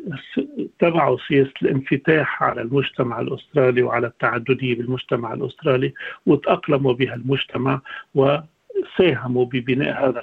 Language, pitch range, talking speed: Arabic, 130-150 Hz, 95 wpm